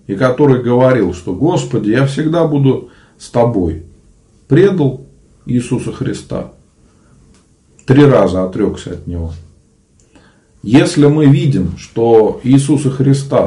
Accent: native